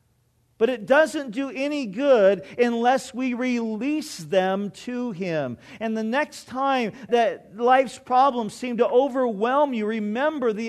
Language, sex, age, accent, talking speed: English, male, 50-69, American, 140 wpm